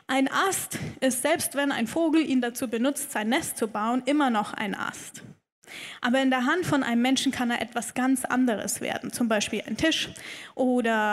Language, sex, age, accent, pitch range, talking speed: German, female, 10-29, German, 230-275 Hz, 195 wpm